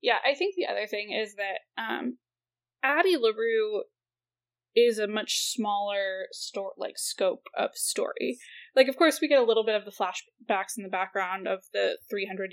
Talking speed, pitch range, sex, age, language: 175 wpm, 200-275 Hz, female, 10-29, English